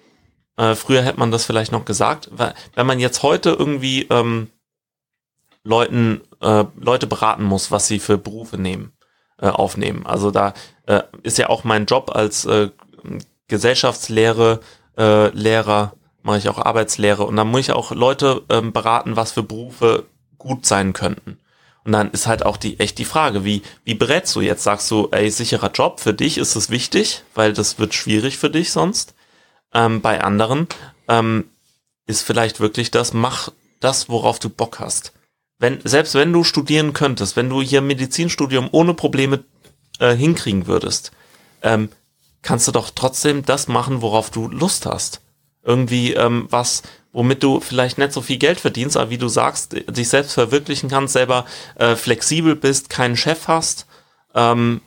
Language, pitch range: German, 110-135 Hz